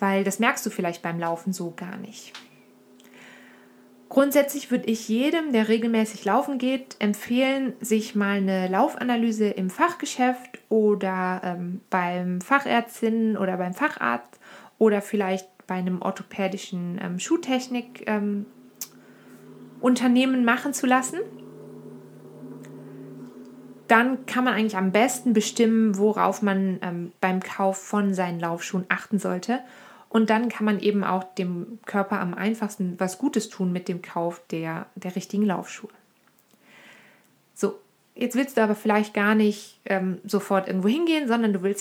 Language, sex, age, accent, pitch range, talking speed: German, female, 20-39, German, 190-245 Hz, 135 wpm